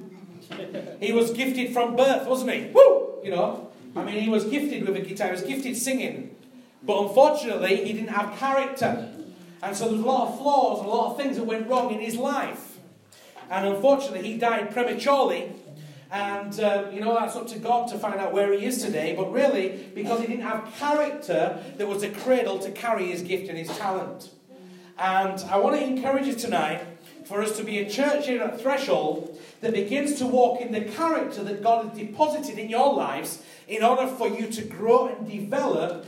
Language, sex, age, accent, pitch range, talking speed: English, male, 40-59, British, 200-260 Hz, 205 wpm